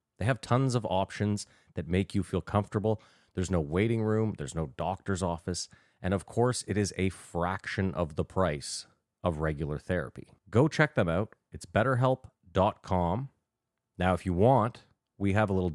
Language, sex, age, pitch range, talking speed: English, male, 30-49, 90-110 Hz, 170 wpm